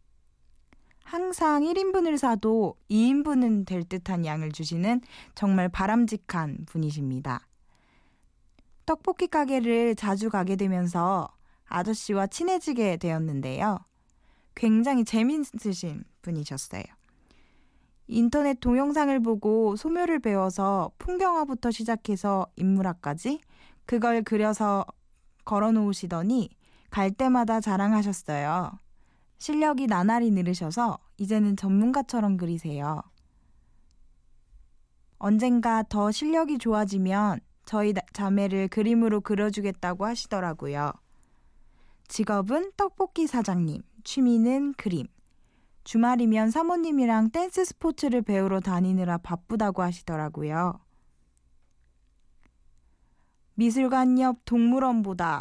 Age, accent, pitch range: 20-39, native, 180-245 Hz